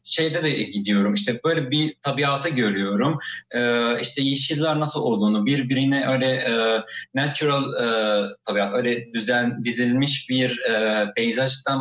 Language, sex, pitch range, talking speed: Turkish, male, 120-180 Hz, 110 wpm